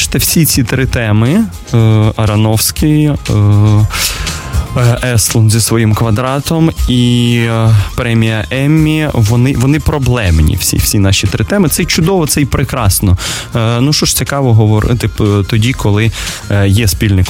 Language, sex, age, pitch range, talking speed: Russian, male, 20-39, 100-125 Hz, 120 wpm